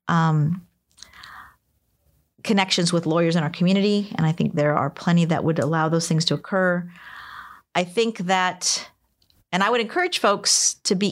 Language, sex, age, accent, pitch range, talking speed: English, female, 40-59, American, 165-200 Hz, 160 wpm